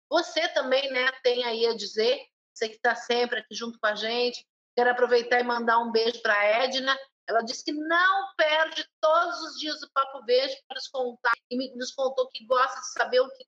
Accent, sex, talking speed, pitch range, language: Brazilian, female, 215 wpm, 245-310 Hz, Portuguese